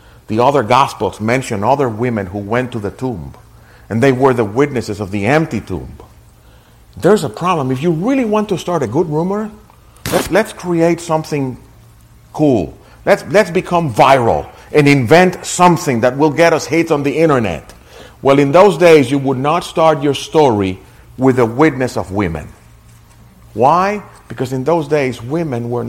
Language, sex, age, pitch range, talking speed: English, male, 50-69, 115-155 Hz, 170 wpm